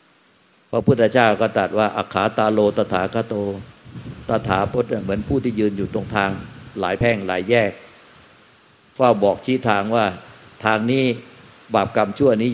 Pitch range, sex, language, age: 100-120 Hz, male, Thai, 60-79